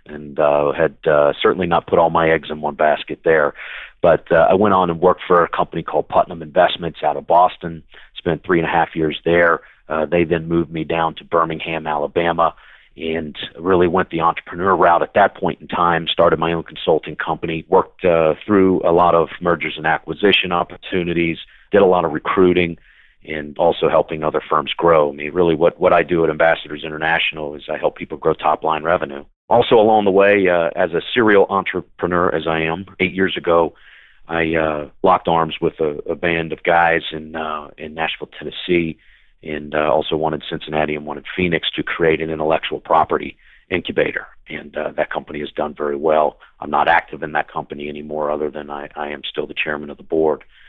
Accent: American